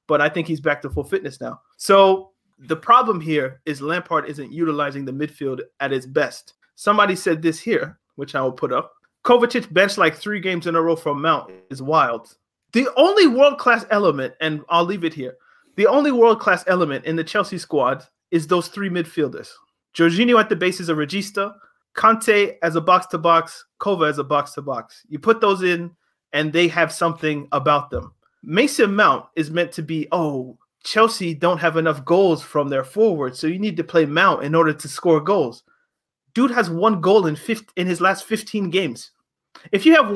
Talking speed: 200 wpm